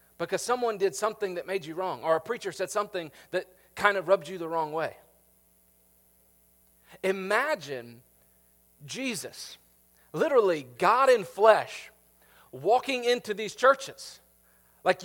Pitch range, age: 155-230 Hz, 40-59